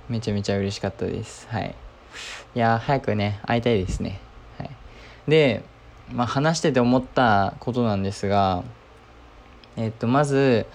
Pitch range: 100-130 Hz